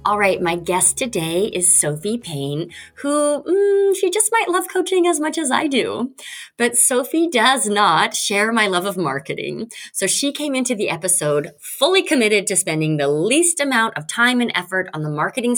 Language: English